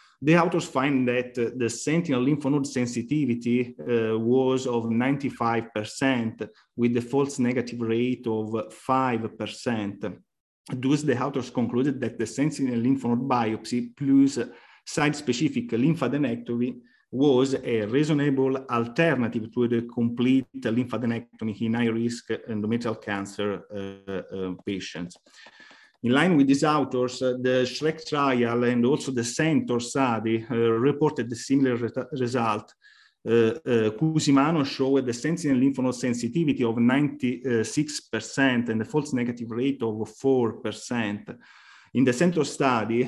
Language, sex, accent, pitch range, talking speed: English, male, Italian, 115-135 Hz, 125 wpm